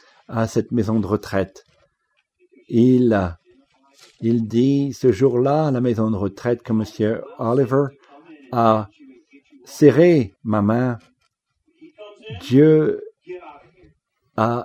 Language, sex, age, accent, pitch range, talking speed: English, male, 50-69, French, 105-145 Hz, 100 wpm